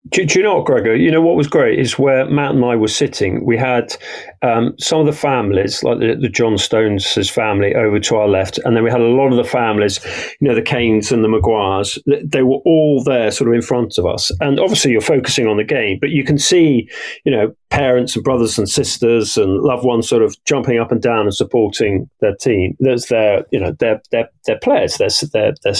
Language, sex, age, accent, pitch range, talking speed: English, male, 40-59, British, 110-155 Hz, 240 wpm